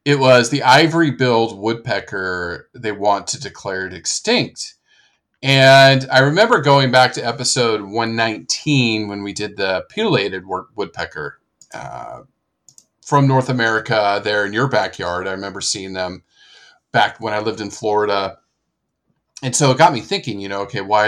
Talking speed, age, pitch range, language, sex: 150 wpm, 40-59, 100-135 Hz, English, male